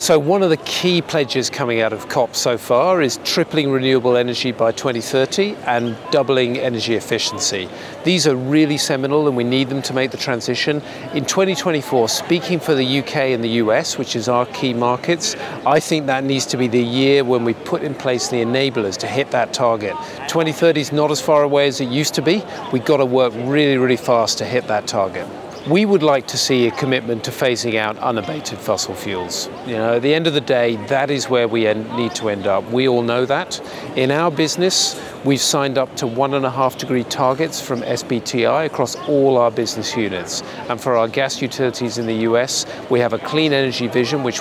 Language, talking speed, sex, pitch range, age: English, 210 wpm, male, 120-150 Hz, 40-59